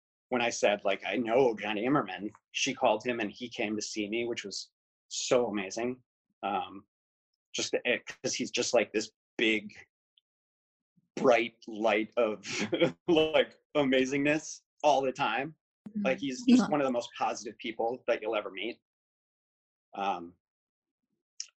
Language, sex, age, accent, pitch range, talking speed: English, male, 30-49, American, 105-145 Hz, 140 wpm